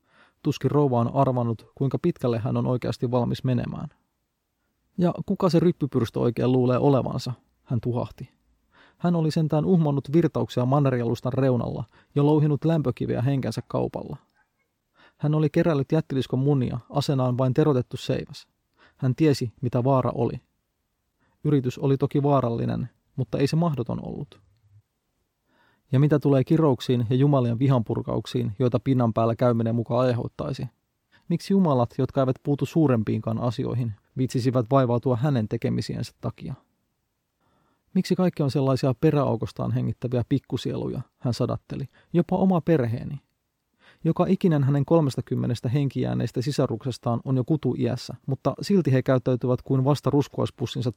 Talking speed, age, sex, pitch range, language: 130 wpm, 30-49, male, 125-145 Hz, Finnish